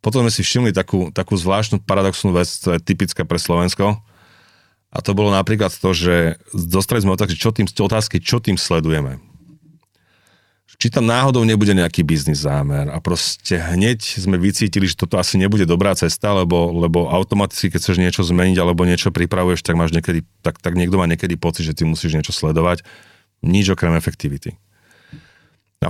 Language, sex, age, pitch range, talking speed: English, male, 30-49, 85-105 Hz, 175 wpm